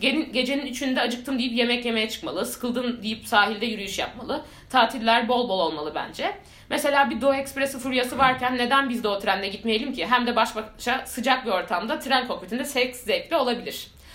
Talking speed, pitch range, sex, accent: 180 wpm, 225-275 Hz, female, native